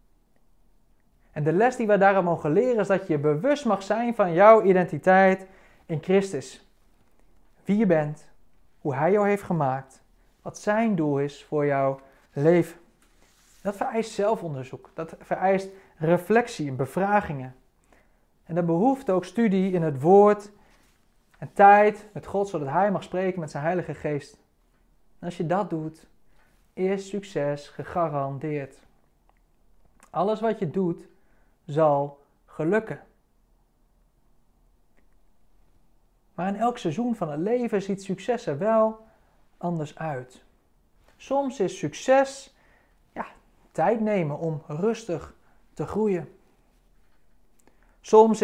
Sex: male